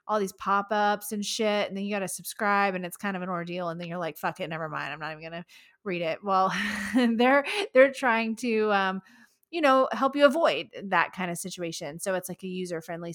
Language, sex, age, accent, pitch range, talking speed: English, female, 20-39, American, 175-235 Hz, 235 wpm